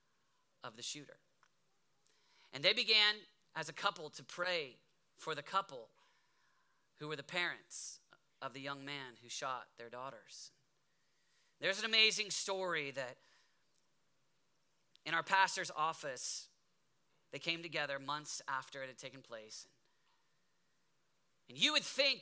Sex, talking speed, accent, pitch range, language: male, 130 wpm, American, 125-195 Hz, English